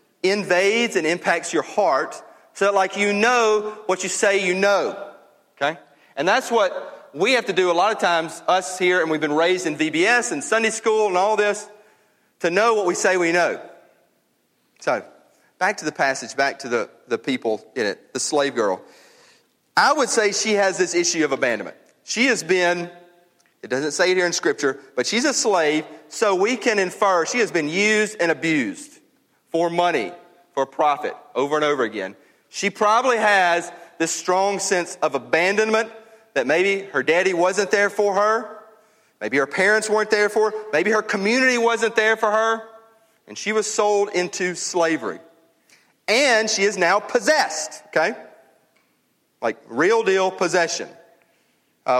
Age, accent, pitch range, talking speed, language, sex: 40-59, American, 175-220 Hz, 175 wpm, English, male